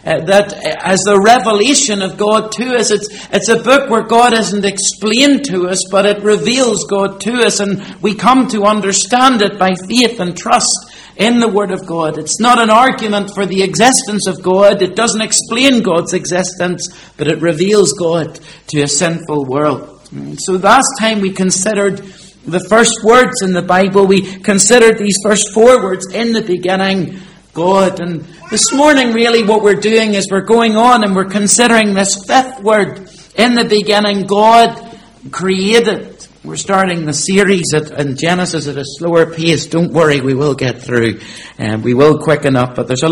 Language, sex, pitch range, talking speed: English, male, 160-215 Hz, 180 wpm